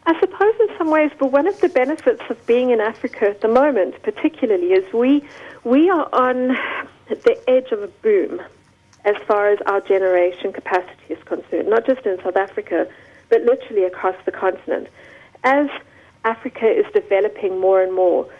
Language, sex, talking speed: English, female, 175 wpm